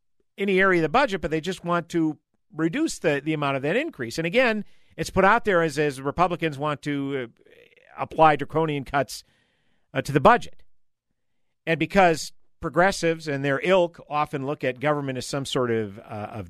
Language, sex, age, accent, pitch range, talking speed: English, male, 50-69, American, 105-155 Hz, 190 wpm